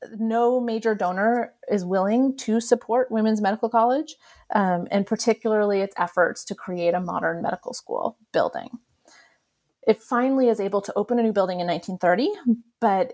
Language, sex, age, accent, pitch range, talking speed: English, female, 30-49, American, 180-230 Hz, 155 wpm